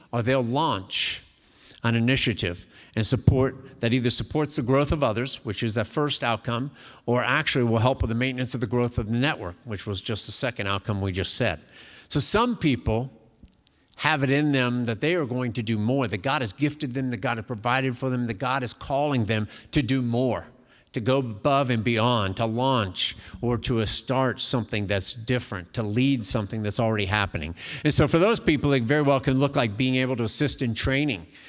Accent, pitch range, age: American, 115-145 Hz, 50-69